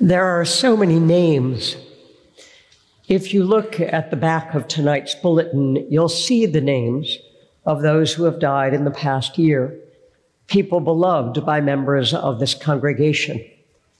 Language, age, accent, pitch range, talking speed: English, 60-79, American, 145-195 Hz, 145 wpm